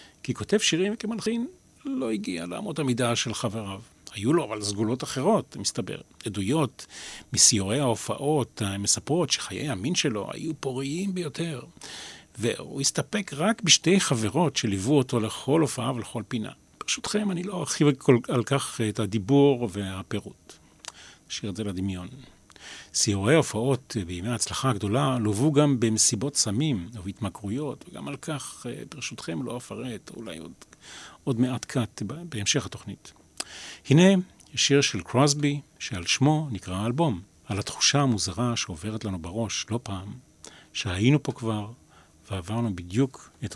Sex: male